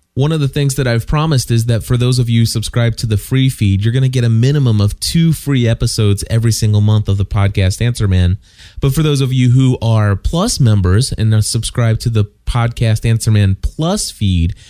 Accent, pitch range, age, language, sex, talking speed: American, 100-130 Hz, 30-49, English, male, 225 wpm